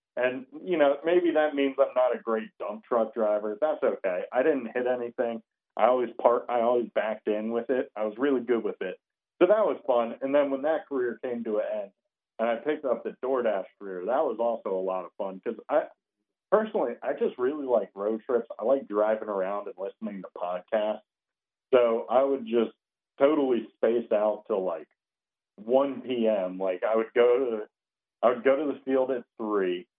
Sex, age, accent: male, 40-59, American